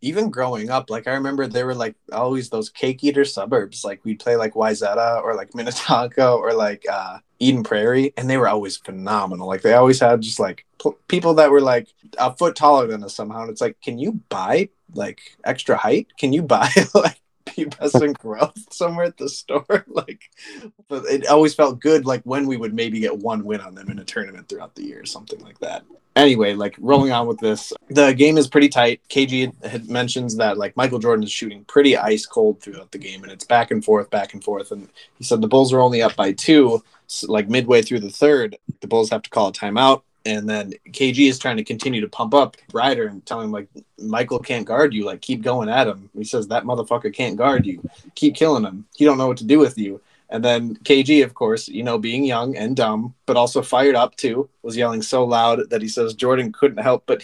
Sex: male